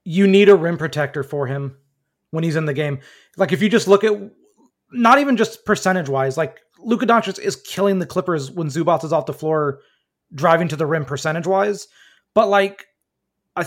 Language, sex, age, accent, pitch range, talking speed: English, male, 30-49, American, 160-210 Hz, 200 wpm